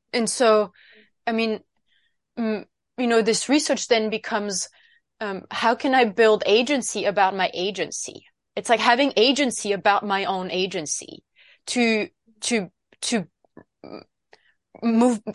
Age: 20-39